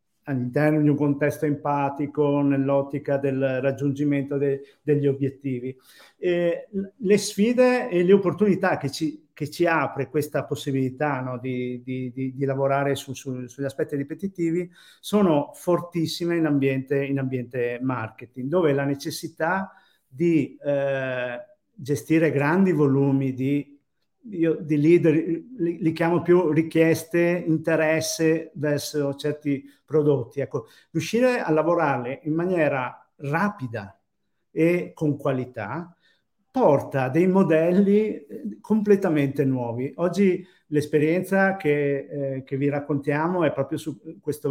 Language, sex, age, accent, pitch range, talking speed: Italian, male, 50-69, native, 140-170 Hz, 110 wpm